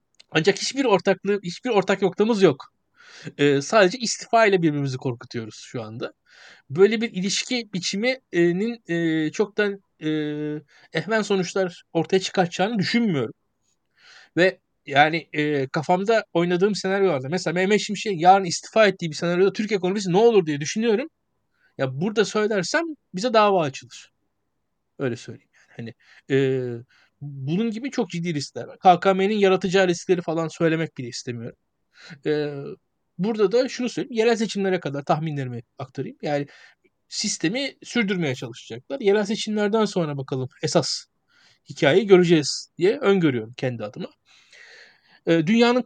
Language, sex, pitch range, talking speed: Turkish, male, 145-200 Hz, 125 wpm